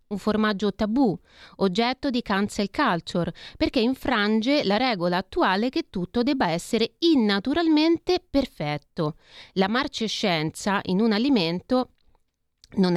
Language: Italian